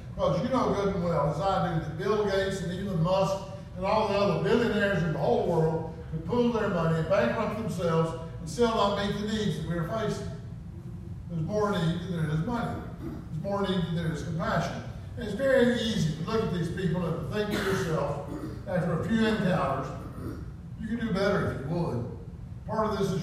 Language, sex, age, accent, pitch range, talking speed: English, male, 50-69, American, 165-200 Hz, 220 wpm